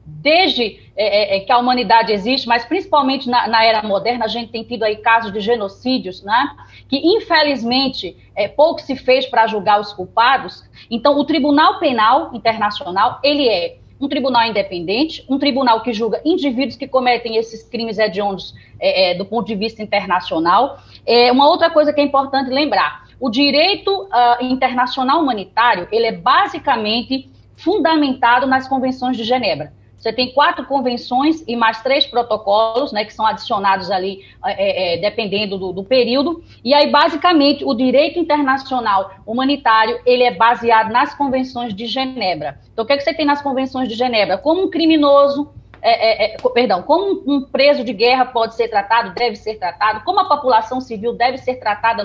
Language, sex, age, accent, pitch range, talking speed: Portuguese, female, 20-39, Brazilian, 215-280 Hz, 165 wpm